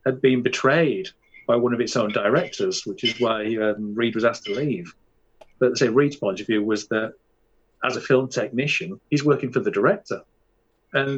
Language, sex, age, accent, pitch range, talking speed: English, male, 40-59, British, 120-150 Hz, 195 wpm